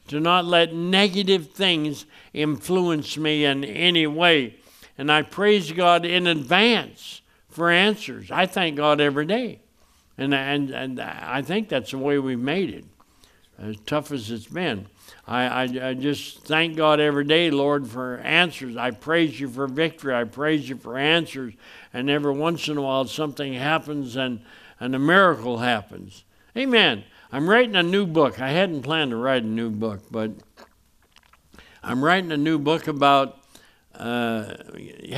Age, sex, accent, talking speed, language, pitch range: 60-79, male, American, 160 wpm, English, 130-170 Hz